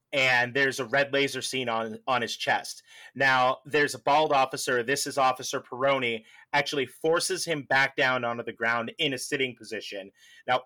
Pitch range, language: 130-150 Hz, English